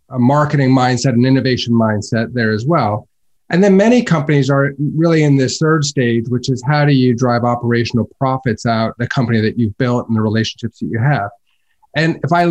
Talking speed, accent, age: 200 wpm, American, 30-49